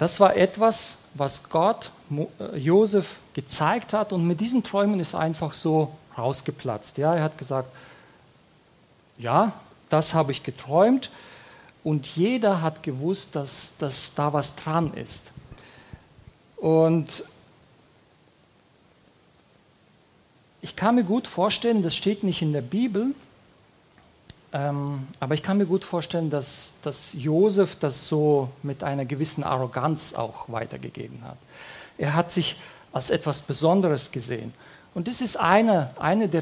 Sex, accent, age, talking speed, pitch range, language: male, German, 40-59, 130 wpm, 140-185 Hz, English